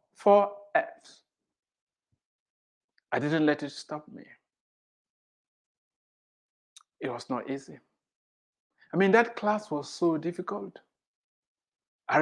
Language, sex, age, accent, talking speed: English, male, 60-79, Nigerian, 100 wpm